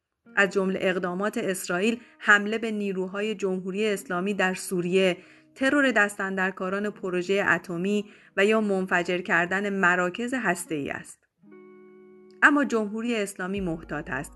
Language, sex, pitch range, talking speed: Persian, female, 185-230 Hz, 115 wpm